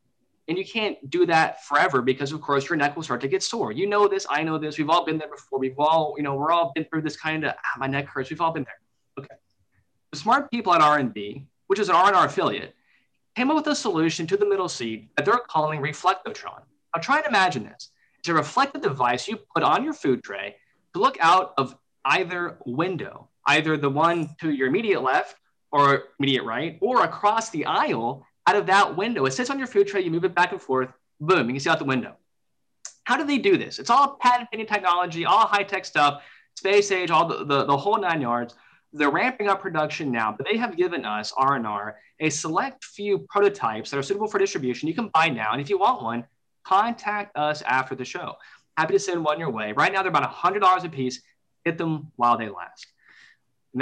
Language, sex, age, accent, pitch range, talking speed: English, male, 20-39, American, 135-195 Hz, 225 wpm